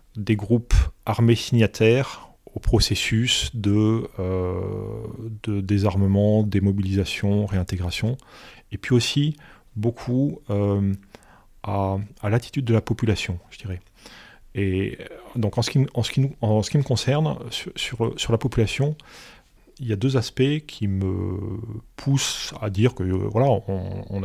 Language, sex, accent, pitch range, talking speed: French, male, French, 100-125 Hz, 145 wpm